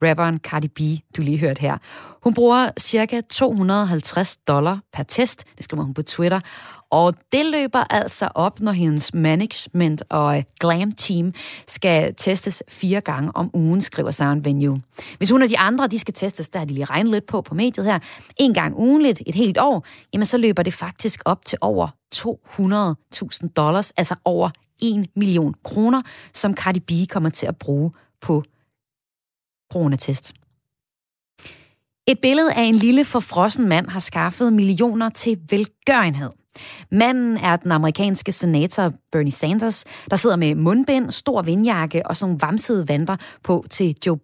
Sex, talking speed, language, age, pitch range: female, 160 wpm, Danish, 30-49, 155-215 Hz